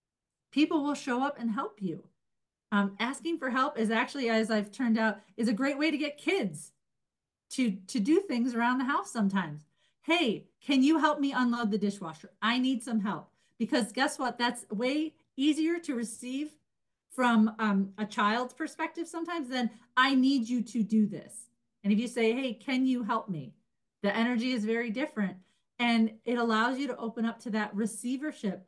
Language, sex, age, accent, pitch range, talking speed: English, female, 40-59, American, 205-255 Hz, 185 wpm